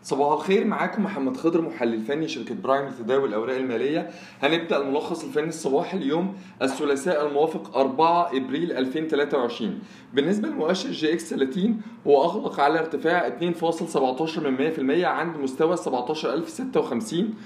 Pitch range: 145-200 Hz